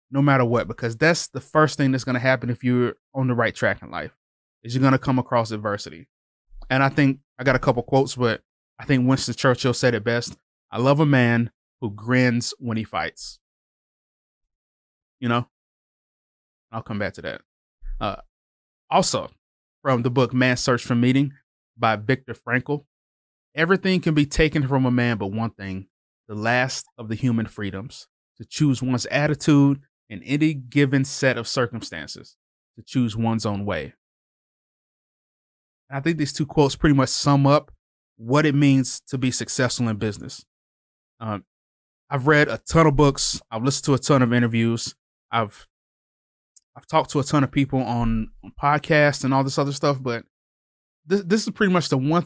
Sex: male